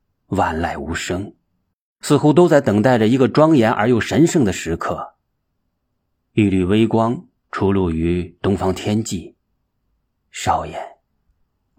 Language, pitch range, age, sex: Chinese, 95-135 Hz, 30-49, male